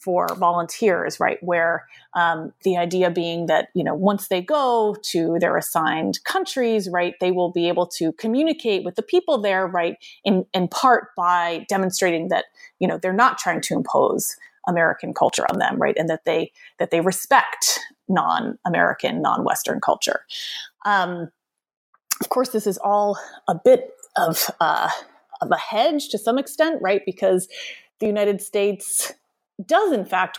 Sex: female